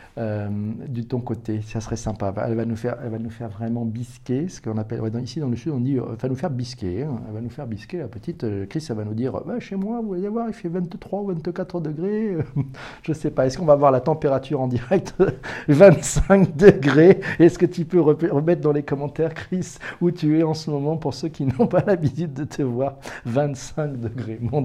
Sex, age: male, 40-59